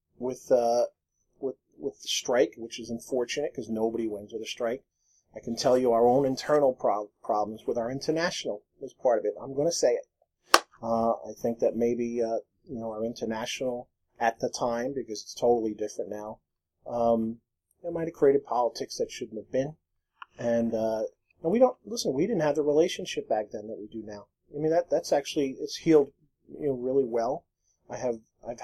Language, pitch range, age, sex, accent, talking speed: English, 110-140 Hz, 40-59, male, American, 200 wpm